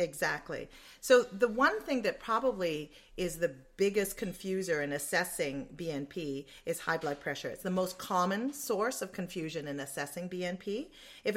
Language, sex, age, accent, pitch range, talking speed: English, female, 40-59, American, 155-200 Hz, 155 wpm